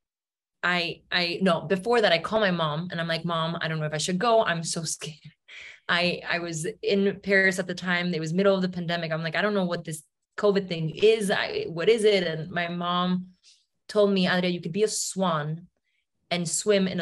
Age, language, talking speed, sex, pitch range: 20-39, English, 230 wpm, female, 165-200 Hz